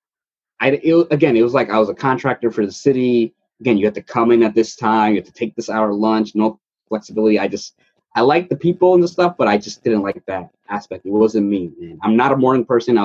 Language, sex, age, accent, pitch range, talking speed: English, male, 20-39, American, 105-130 Hz, 265 wpm